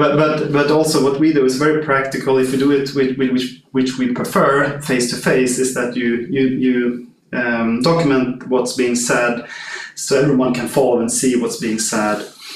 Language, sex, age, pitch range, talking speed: English, male, 30-49, 120-135 Hz, 190 wpm